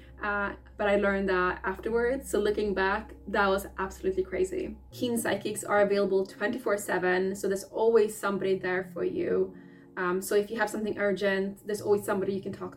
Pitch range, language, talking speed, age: 190-230 Hz, English, 180 wpm, 20-39